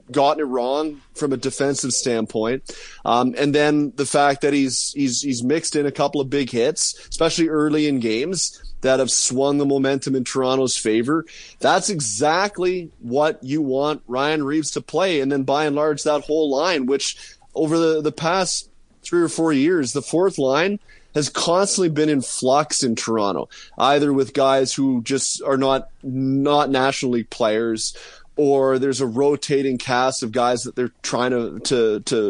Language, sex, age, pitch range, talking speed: English, male, 20-39, 125-150 Hz, 175 wpm